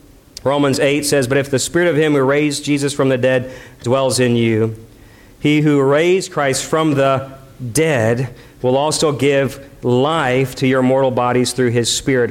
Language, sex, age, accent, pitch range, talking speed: English, male, 50-69, American, 140-185 Hz, 175 wpm